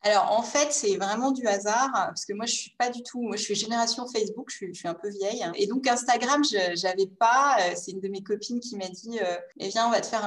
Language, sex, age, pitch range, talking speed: English, female, 30-49, 185-235 Hz, 290 wpm